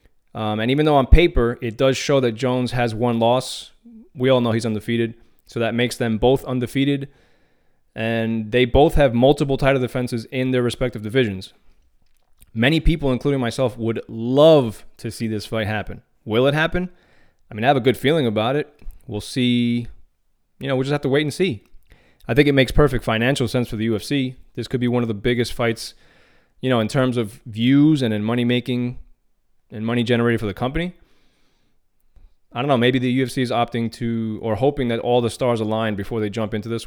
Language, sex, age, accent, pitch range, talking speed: English, male, 20-39, American, 115-130 Hz, 205 wpm